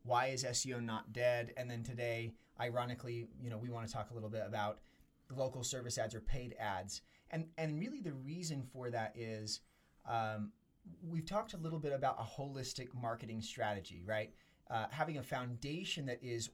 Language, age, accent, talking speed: English, 30-49, American, 185 wpm